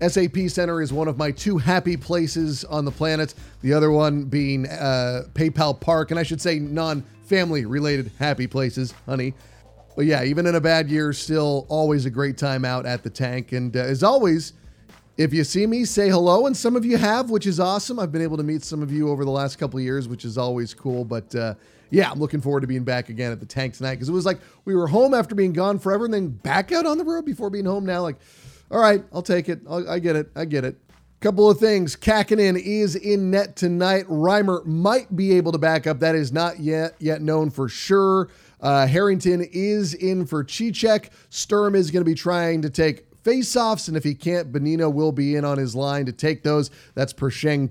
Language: English